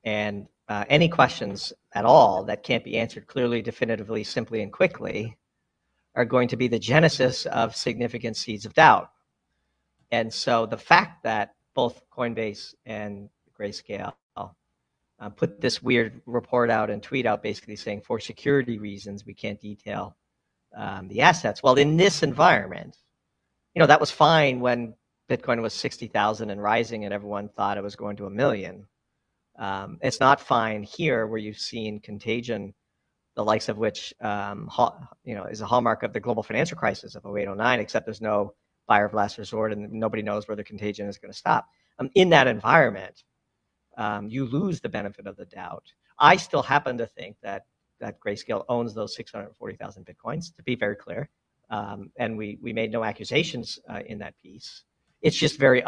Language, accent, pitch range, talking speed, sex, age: English, American, 105-125 Hz, 175 wpm, male, 50-69